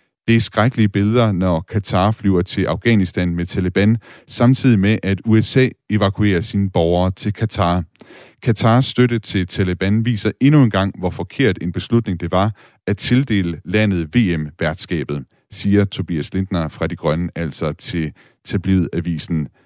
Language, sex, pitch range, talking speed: Danish, male, 90-110 Hz, 145 wpm